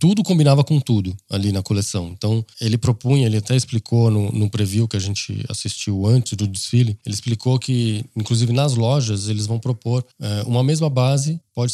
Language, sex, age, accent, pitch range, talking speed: Portuguese, male, 20-39, Brazilian, 105-130 Hz, 185 wpm